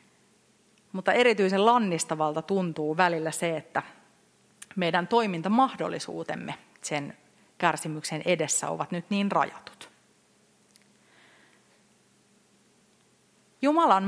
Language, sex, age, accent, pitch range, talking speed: Finnish, female, 30-49, native, 160-205 Hz, 70 wpm